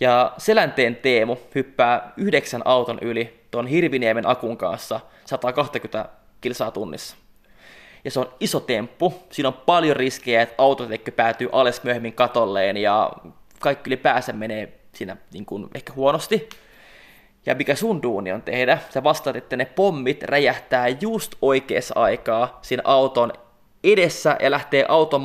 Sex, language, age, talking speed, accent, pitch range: male, Finnish, 20-39, 140 wpm, native, 120-150 Hz